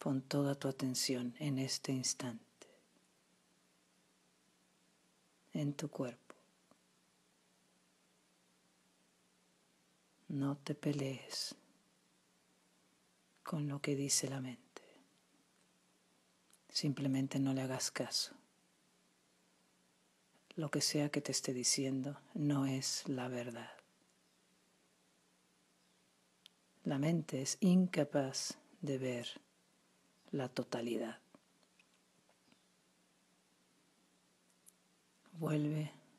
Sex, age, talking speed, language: female, 40-59, 75 wpm, Spanish